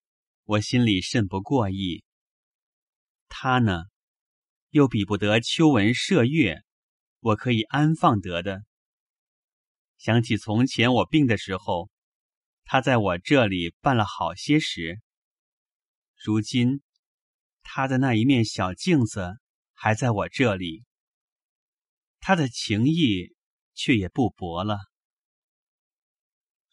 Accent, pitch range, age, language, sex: native, 100-140 Hz, 30-49, Chinese, male